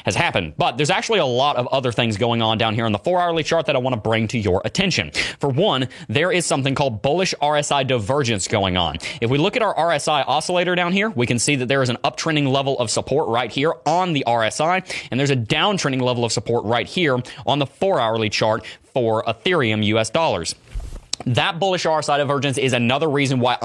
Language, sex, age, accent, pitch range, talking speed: English, male, 30-49, American, 115-150 Hz, 225 wpm